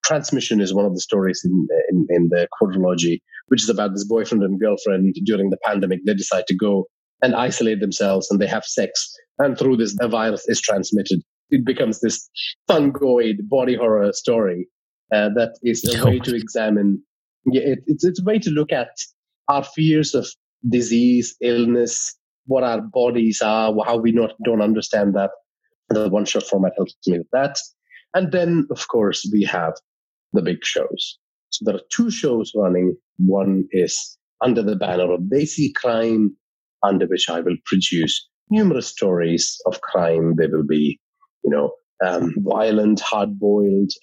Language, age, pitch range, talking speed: English, 30-49, 95-130 Hz, 170 wpm